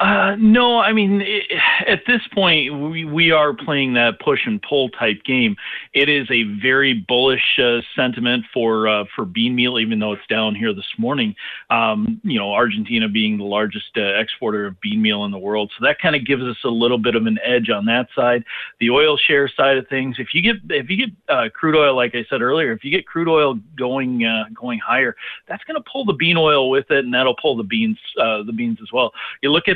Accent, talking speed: American, 235 wpm